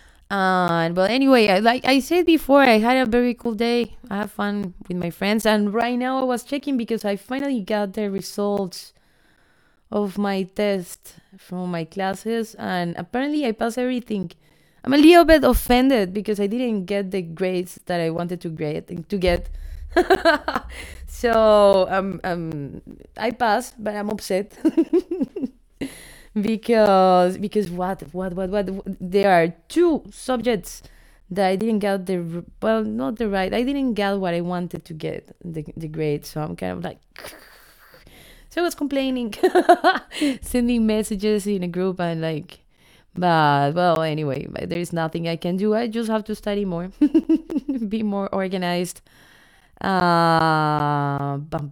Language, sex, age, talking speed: English, female, 20-39, 160 wpm